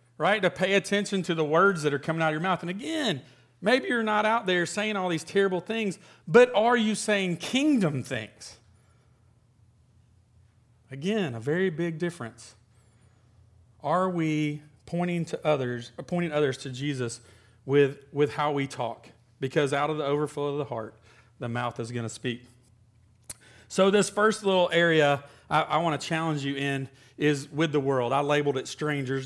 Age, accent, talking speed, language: 40-59, American, 170 wpm, English